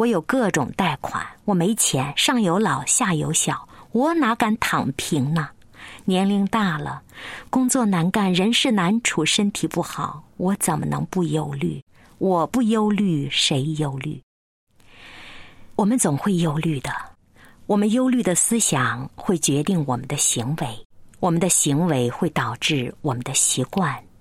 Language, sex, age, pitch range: Chinese, female, 50-69, 135-195 Hz